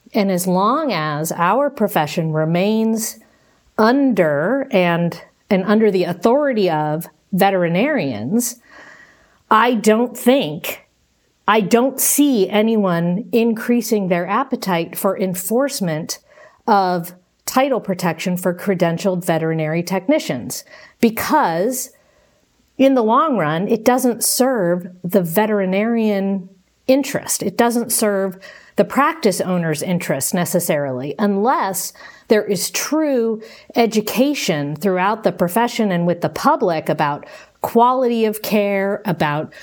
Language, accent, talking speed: English, American, 105 wpm